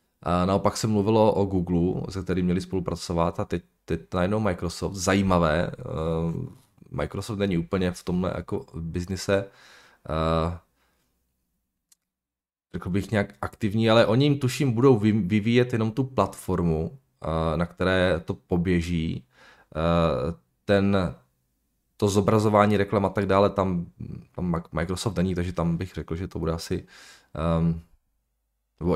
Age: 20-39